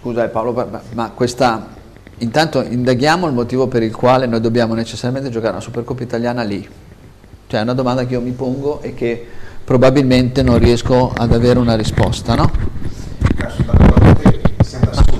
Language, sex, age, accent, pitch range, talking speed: Italian, male, 50-69, native, 110-145 Hz, 150 wpm